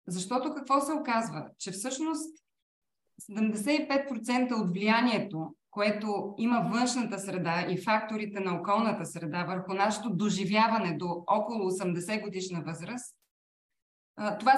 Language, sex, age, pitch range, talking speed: Bulgarian, female, 20-39, 195-255 Hz, 110 wpm